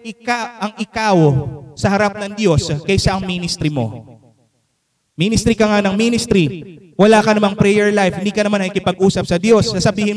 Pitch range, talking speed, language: 165-230 Hz, 175 wpm, Filipino